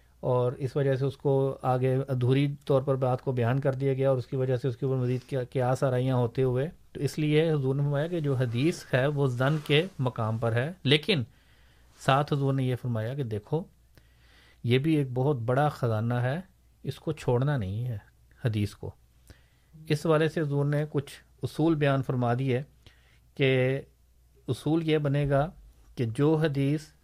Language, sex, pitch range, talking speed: Urdu, male, 125-145 Hz, 195 wpm